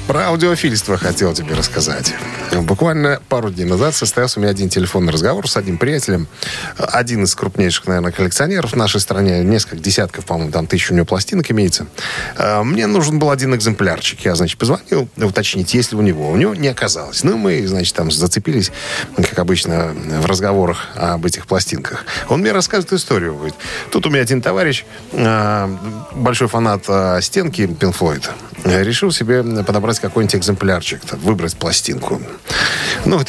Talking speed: 155 wpm